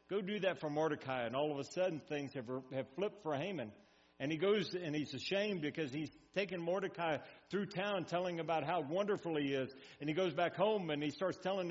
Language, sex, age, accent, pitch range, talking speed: English, male, 60-79, American, 140-190 Hz, 220 wpm